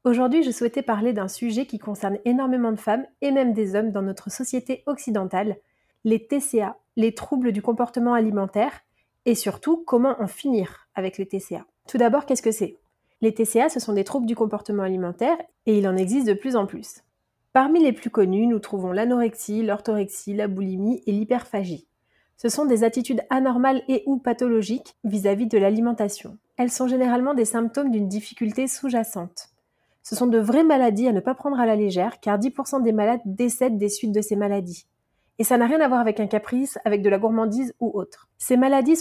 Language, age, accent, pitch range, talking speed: French, 30-49, French, 205-250 Hz, 195 wpm